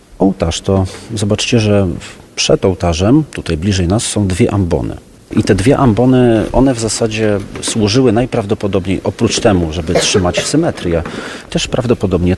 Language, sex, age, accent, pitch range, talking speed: Polish, male, 40-59, native, 85-110 Hz, 135 wpm